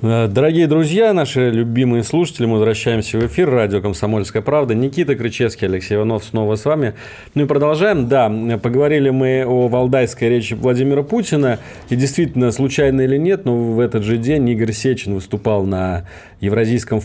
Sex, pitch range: male, 105-130 Hz